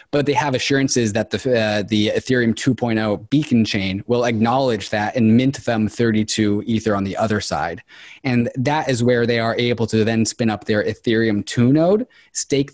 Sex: male